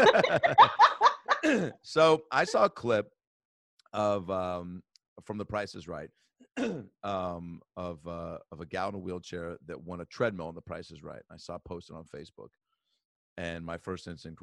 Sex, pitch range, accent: male, 90-135 Hz, American